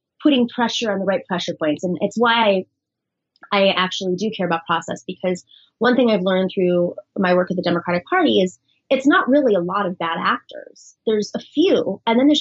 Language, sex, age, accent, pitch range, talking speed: English, female, 20-39, American, 180-235 Hz, 215 wpm